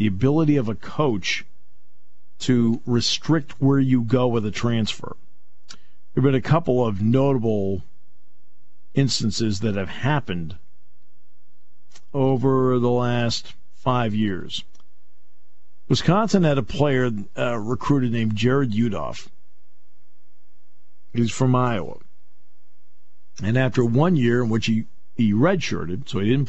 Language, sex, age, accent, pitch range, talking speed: English, male, 50-69, American, 75-120 Hz, 120 wpm